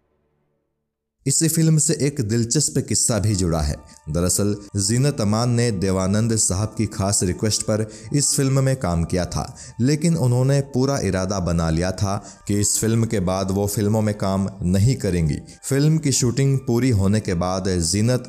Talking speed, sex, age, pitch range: 70 wpm, male, 30-49, 95-120 Hz